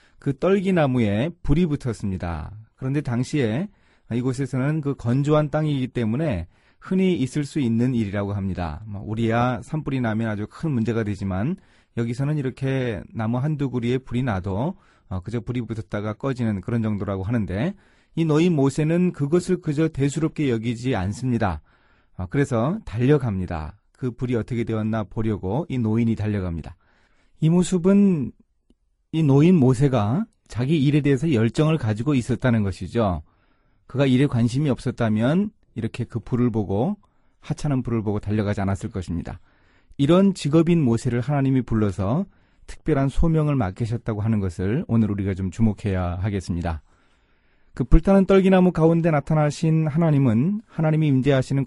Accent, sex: native, male